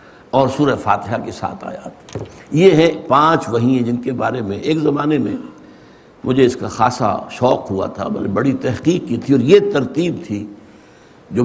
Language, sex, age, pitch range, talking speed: Urdu, male, 60-79, 115-155 Hz, 175 wpm